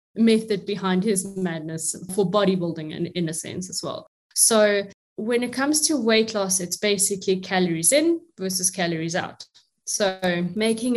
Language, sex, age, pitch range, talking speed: English, female, 20-39, 185-220 Hz, 160 wpm